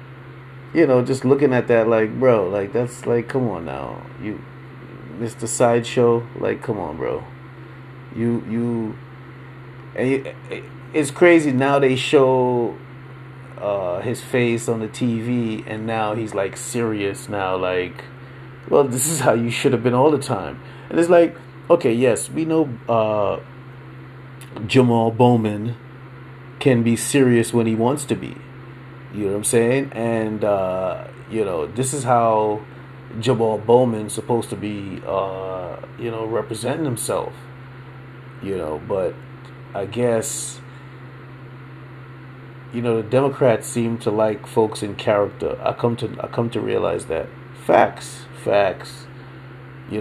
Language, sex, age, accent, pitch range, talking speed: English, male, 30-49, American, 90-130 Hz, 145 wpm